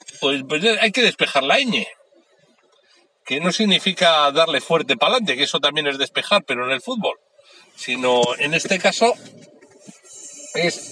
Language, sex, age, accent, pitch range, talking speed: Spanish, male, 60-79, Spanish, 140-210 Hz, 155 wpm